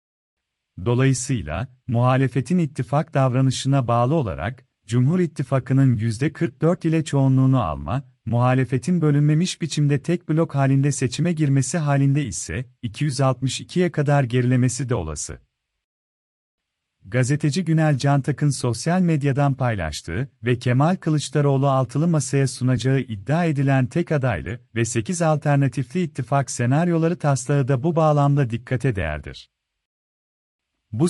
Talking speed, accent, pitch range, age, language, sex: 105 wpm, native, 120-150 Hz, 40-59, Turkish, male